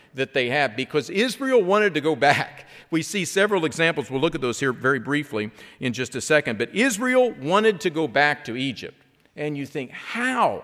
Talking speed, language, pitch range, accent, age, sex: 205 wpm, English, 130-190 Hz, American, 50-69, male